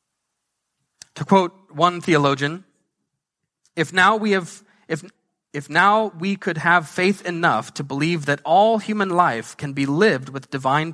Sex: male